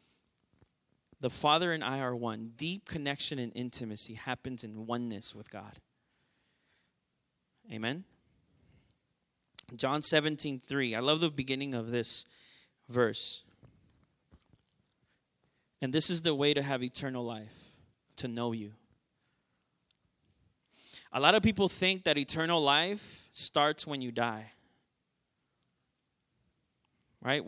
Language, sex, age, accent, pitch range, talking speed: English, male, 20-39, American, 120-160 Hz, 110 wpm